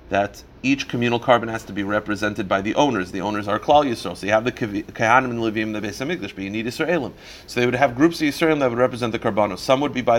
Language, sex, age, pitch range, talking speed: English, male, 40-59, 115-150 Hz, 265 wpm